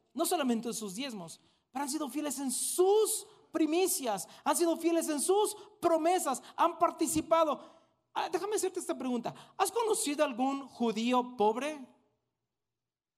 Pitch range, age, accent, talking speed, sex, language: 225-310 Hz, 40-59, Mexican, 135 wpm, male, Spanish